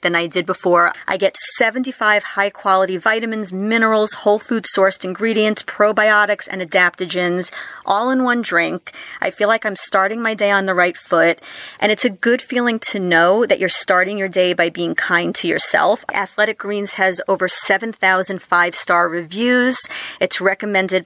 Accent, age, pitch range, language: American, 40-59, 185-220 Hz, English